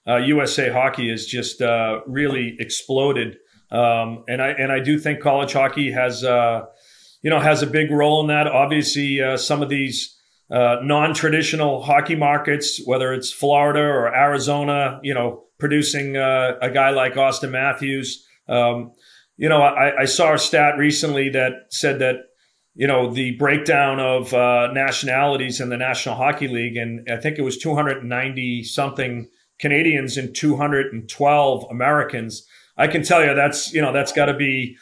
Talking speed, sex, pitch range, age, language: 165 wpm, male, 125-145 Hz, 40-59, English